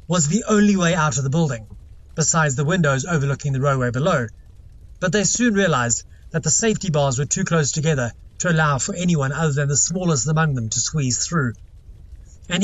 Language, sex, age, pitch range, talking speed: English, male, 30-49, 115-170 Hz, 195 wpm